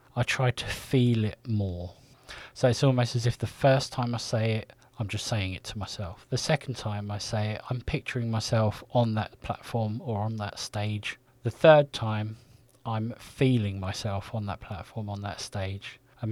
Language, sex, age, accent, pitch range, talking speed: English, male, 20-39, British, 110-130 Hz, 190 wpm